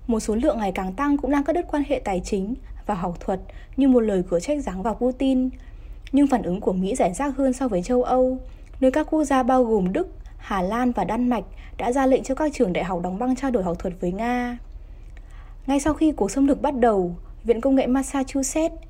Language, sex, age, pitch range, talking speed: Vietnamese, female, 20-39, 215-275 Hz, 245 wpm